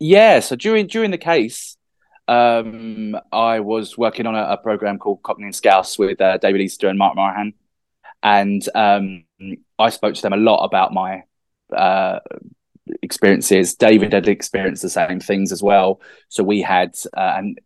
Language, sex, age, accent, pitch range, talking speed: English, male, 20-39, British, 100-135 Hz, 170 wpm